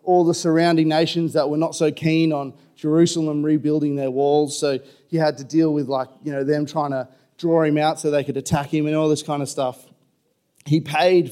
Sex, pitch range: male, 140-160 Hz